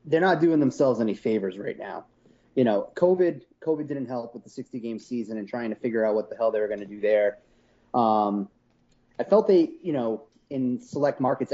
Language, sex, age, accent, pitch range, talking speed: English, male, 30-49, American, 110-130 Hz, 215 wpm